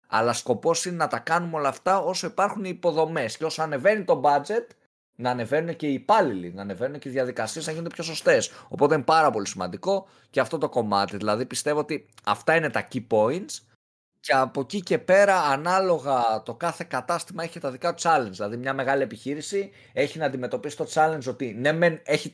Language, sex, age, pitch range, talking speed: Greek, male, 20-39, 125-170 Hz, 200 wpm